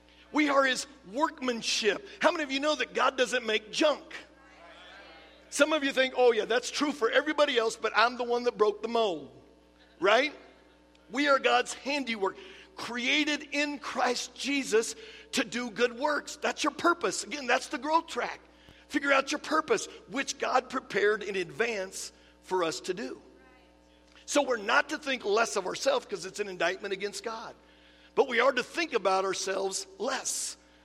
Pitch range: 205-280 Hz